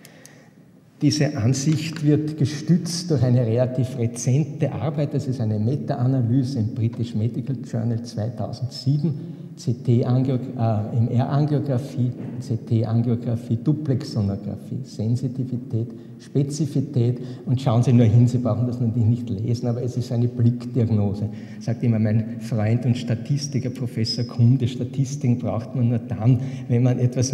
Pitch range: 115-135 Hz